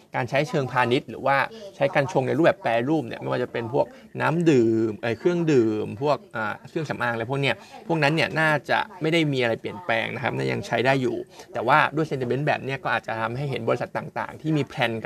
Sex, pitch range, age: male, 120-150 Hz, 20-39